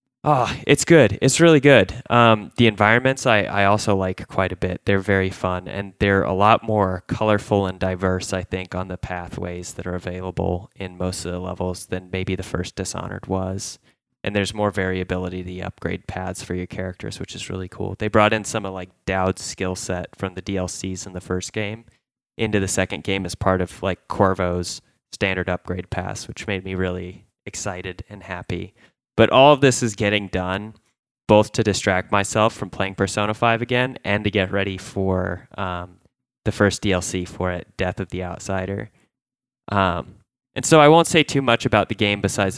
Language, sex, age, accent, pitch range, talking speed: English, male, 20-39, American, 90-110 Hz, 195 wpm